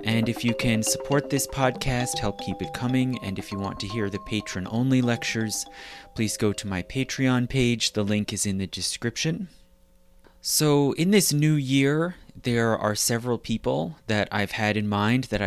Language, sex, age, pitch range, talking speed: English, male, 30-49, 105-130 Hz, 180 wpm